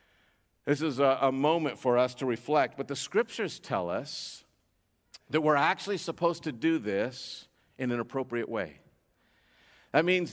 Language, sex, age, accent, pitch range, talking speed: English, male, 50-69, American, 110-155 Hz, 150 wpm